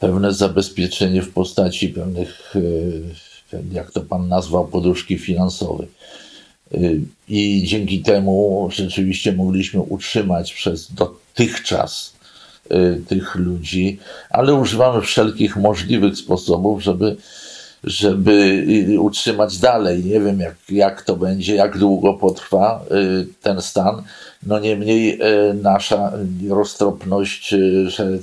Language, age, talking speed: English, 50-69, 100 wpm